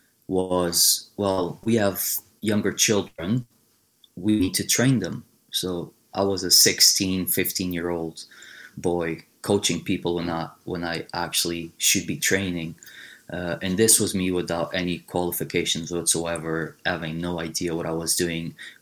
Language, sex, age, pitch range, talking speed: English, male, 20-39, 85-105 Hz, 150 wpm